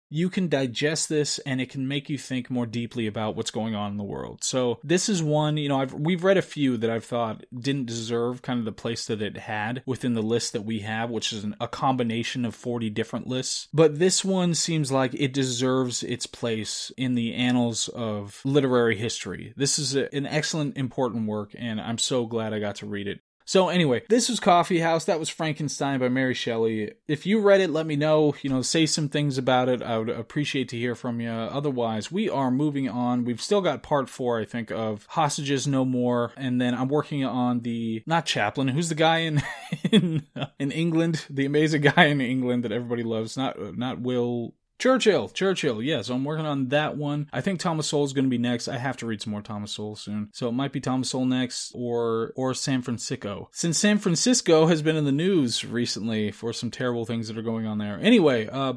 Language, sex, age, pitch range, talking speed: English, male, 20-39, 120-150 Hz, 225 wpm